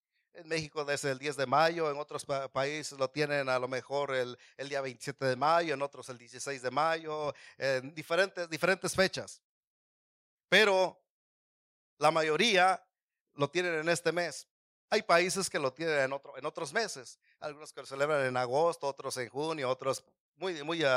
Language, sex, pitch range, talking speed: Spanish, male, 135-165 Hz, 170 wpm